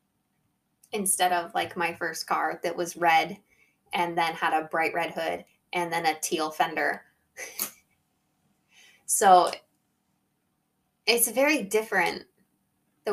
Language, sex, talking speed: English, female, 120 wpm